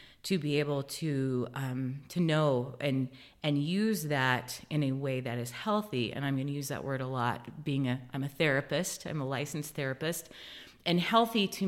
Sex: female